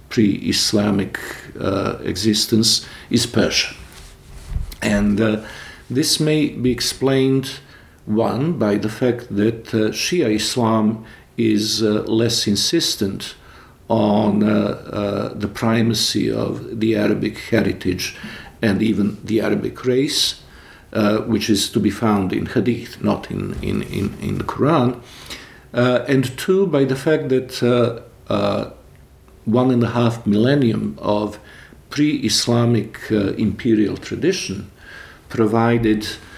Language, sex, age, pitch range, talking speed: English, male, 50-69, 105-120 Hz, 110 wpm